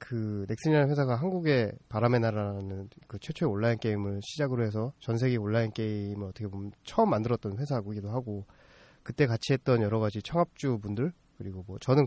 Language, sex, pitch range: Korean, male, 105-140 Hz